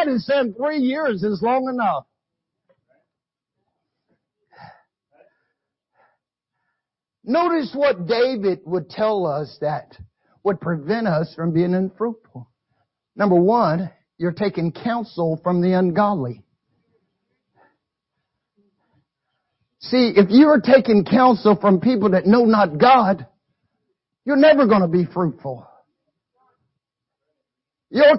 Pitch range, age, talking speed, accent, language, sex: 195-265 Hz, 50-69, 100 wpm, American, English, male